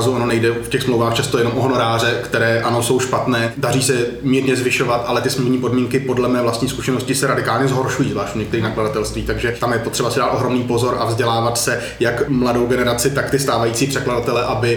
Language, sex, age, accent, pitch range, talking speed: Czech, male, 30-49, native, 120-140 Hz, 205 wpm